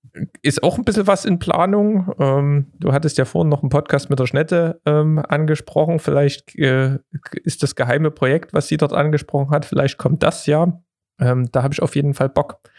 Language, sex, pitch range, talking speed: German, male, 120-150 Hz, 200 wpm